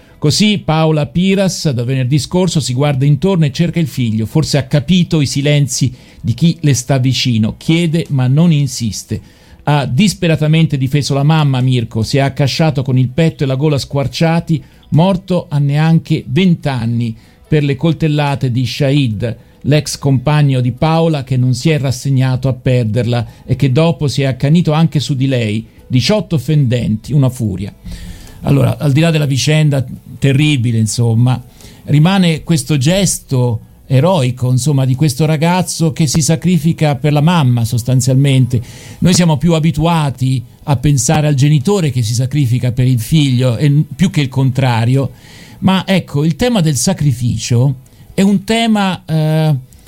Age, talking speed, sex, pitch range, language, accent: 50-69, 155 wpm, male, 125-160 Hz, Italian, native